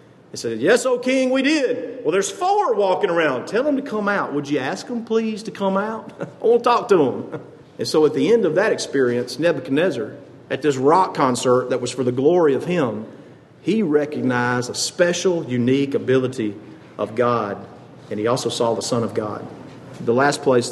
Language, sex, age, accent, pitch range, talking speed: English, male, 50-69, American, 125-195 Hz, 205 wpm